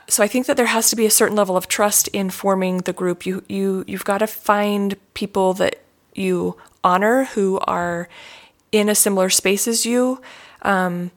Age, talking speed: 30-49, 195 wpm